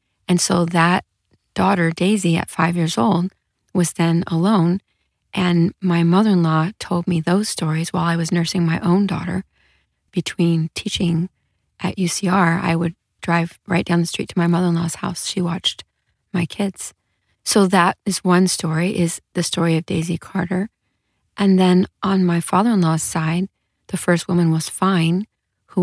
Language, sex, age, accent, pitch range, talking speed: English, female, 30-49, American, 165-185 Hz, 160 wpm